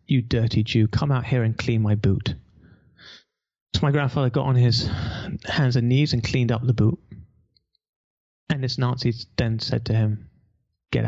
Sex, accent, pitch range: male, British, 115-135 Hz